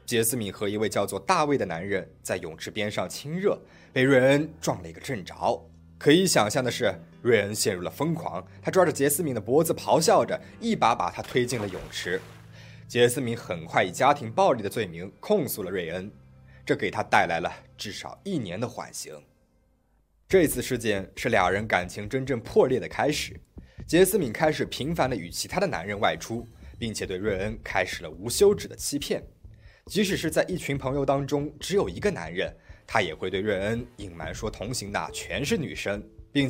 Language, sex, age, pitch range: Chinese, male, 20-39, 100-145 Hz